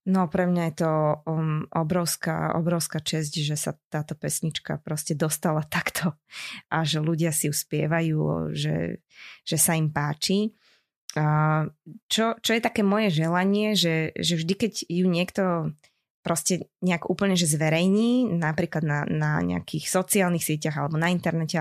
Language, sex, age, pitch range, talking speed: Slovak, female, 20-39, 160-195 Hz, 140 wpm